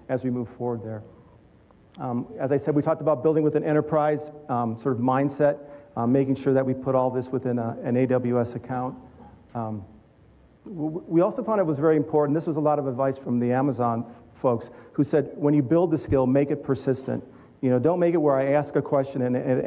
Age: 40-59